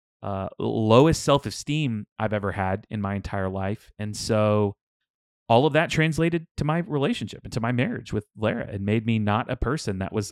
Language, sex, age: English, male, 30-49